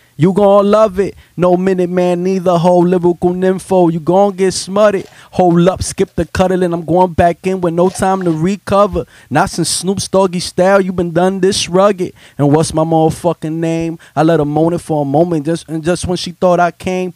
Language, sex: English, male